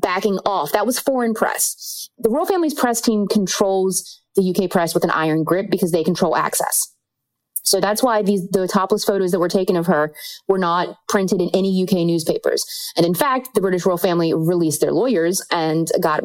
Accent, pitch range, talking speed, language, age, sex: American, 170-215 Hz, 195 wpm, English, 30-49, female